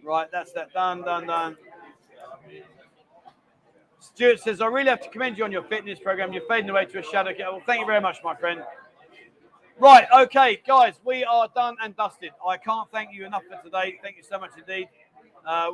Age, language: 40-59, English